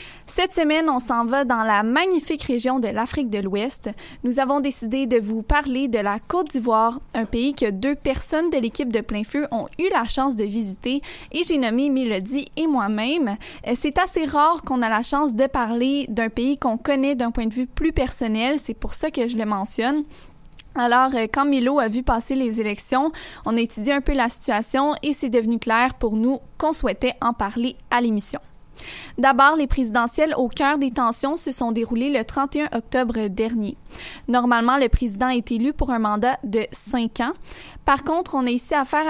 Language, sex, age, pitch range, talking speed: French, female, 20-39, 230-280 Hz, 200 wpm